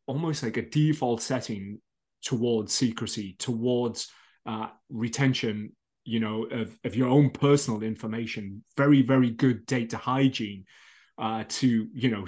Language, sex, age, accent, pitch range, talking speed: English, male, 30-49, British, 115-130 Hz, 130 wpm